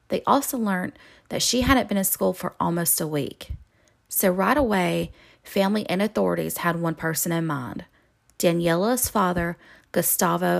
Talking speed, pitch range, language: 155 wpm, 170-215 Hz, English